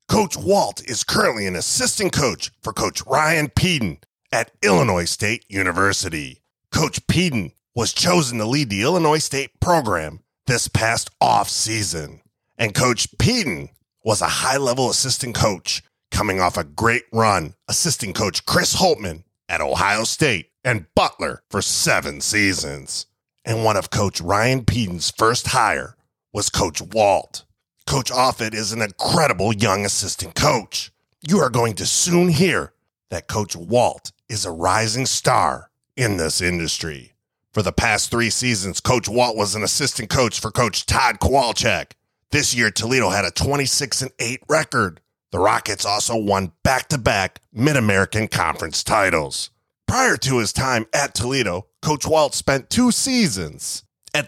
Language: English